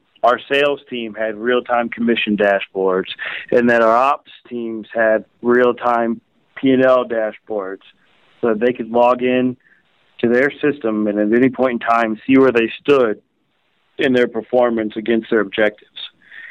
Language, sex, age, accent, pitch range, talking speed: English, male, 40-59, American, 110-125 Hz, 150 wpm